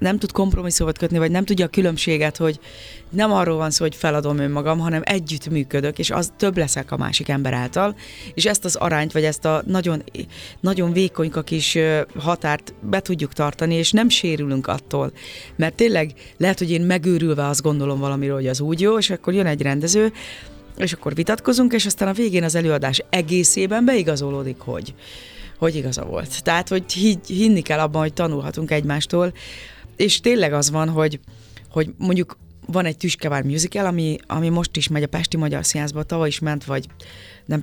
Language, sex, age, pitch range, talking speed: Hungarian, female, 30-49, 145-180 Hz, 180 wpm